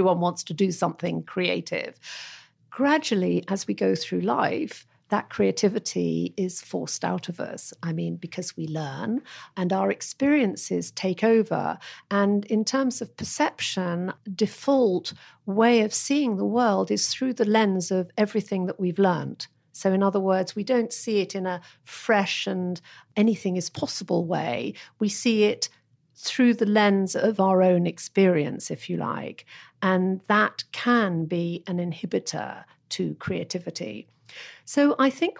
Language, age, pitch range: German, 50-69, 175-215 Hz